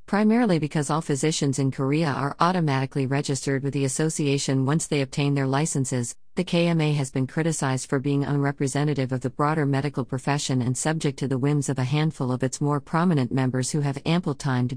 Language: Korean